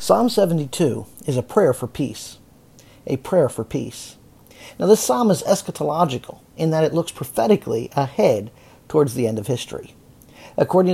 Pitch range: 130-175 Hz